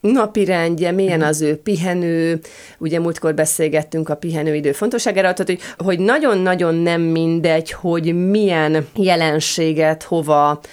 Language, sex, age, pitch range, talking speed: Hungarian, female, 30-49, 155-185 Hz, 120 wpm